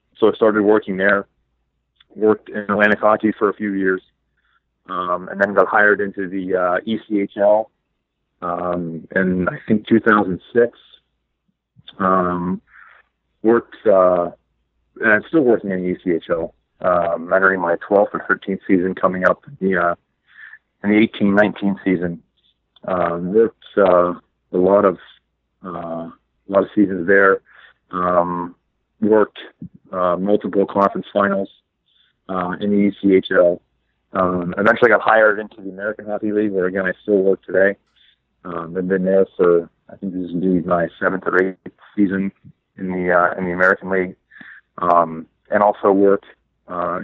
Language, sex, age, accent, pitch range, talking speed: English, male, 40-59, American, 90-105 Hz, 145 wpm